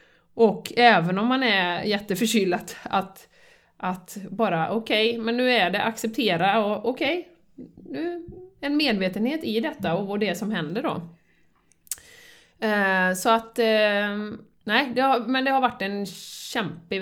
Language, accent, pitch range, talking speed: Swedish, native, 175-230 Hz, 150 wpm